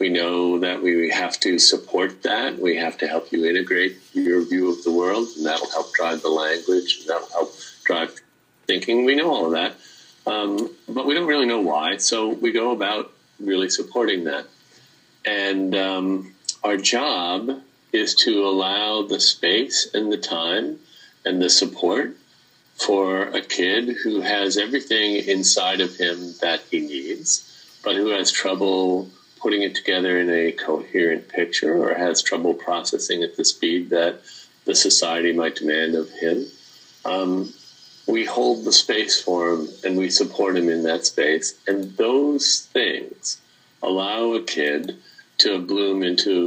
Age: 50-69